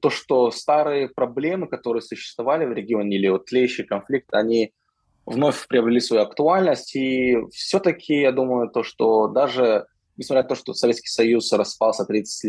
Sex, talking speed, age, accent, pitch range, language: male, 155 wpm, 20-39, native, 105-135 Hz, Russian